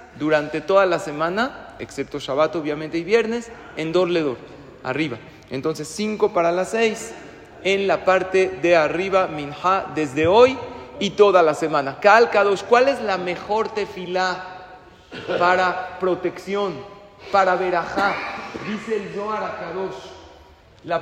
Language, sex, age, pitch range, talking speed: Spanish, male, 40-59, 155-195 Hz, 130 wpm